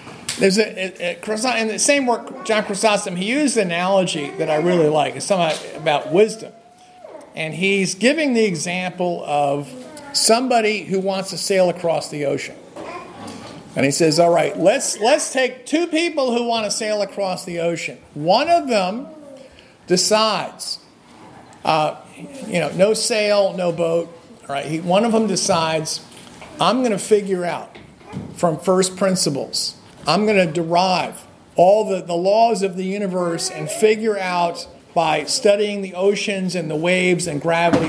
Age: 50-69